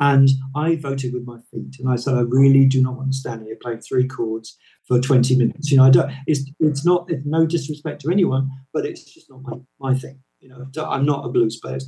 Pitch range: 130-160 Hz